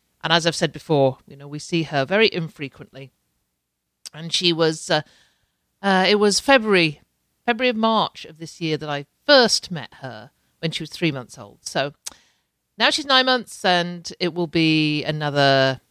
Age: 50-69